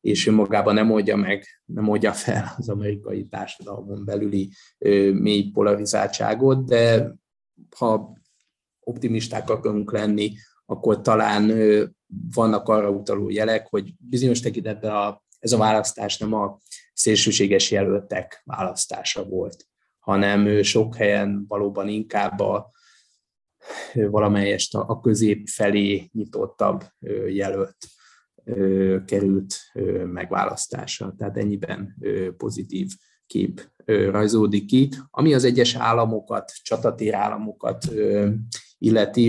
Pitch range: 100-110 Hz